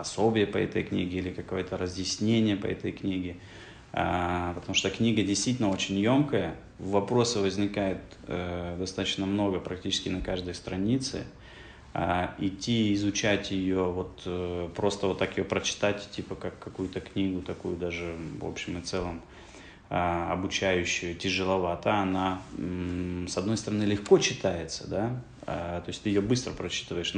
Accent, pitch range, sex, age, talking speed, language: native, 90-100 Hz, male, 20-39, 130 wpm, Russian